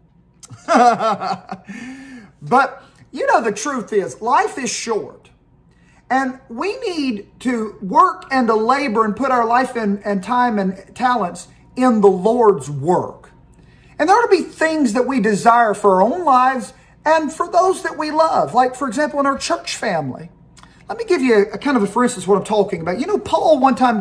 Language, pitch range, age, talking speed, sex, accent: English, 200-265 Hz, 40-59, 190 wpm, male, American